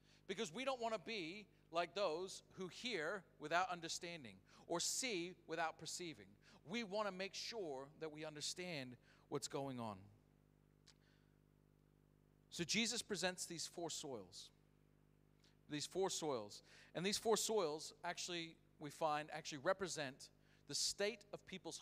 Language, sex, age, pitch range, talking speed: English, male, 40-59, 145-180 Hz, 135 wpm